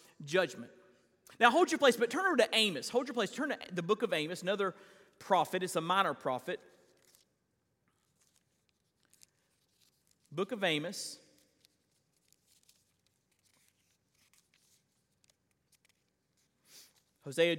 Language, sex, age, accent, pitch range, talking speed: English, male, 40-59, American, 175-245 Hz, 100 wpm